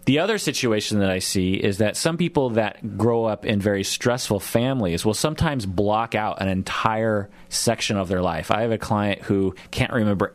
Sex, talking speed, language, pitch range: male, 195 wpm, English, 95-120 Hz